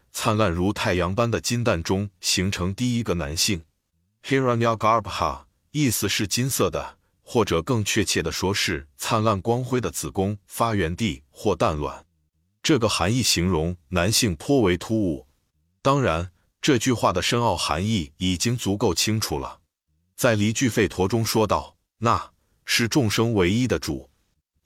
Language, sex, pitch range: Chinese, male, 85-115 Hz